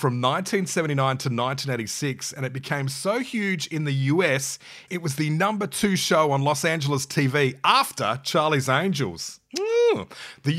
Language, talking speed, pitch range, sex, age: English, 155 wpm, 130-190 Hz, male, 30-49